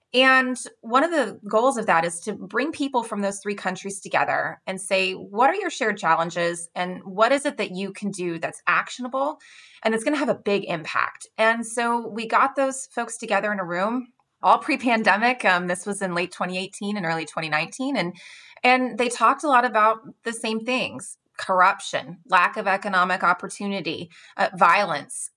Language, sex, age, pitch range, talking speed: English, female, 20-39, 180-240 Hz, 185 wpm